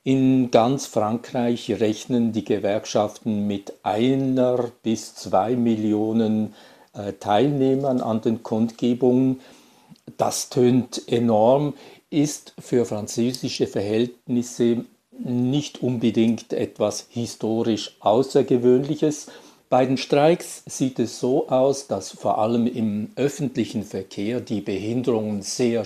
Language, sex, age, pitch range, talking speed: German, male, 50-69, 110-130 Hz, 100 wpm